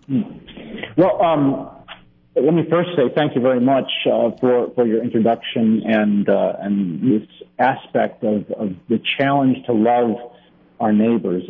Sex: male